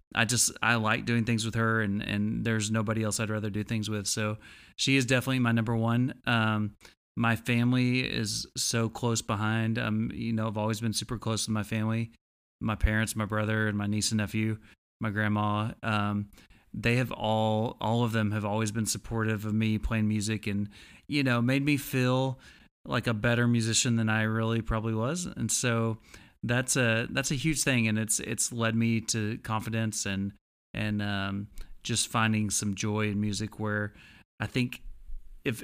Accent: American